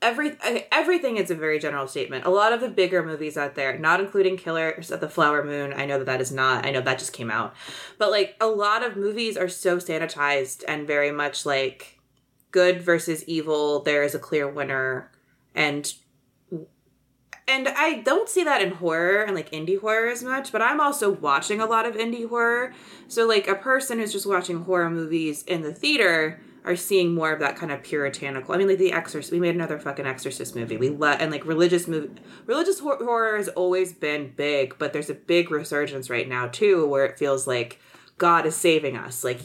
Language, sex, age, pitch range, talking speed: English, female, 20-39, 140-195 Hz, 210 wpm